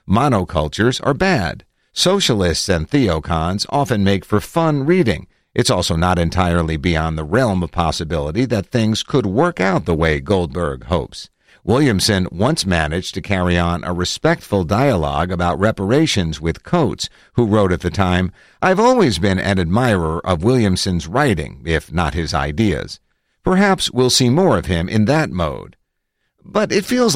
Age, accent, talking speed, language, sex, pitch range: 50-69, American, 155 wpm, English, male, 85-125 Hz